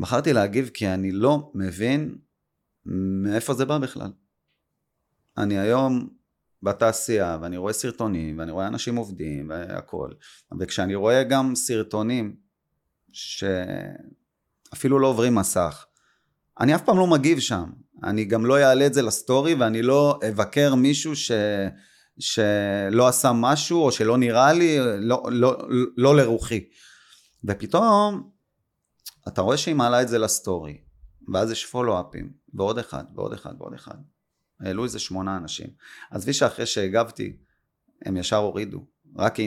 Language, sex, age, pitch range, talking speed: Hebrew, male, 30-49, 100-130 Hz, 130 wpm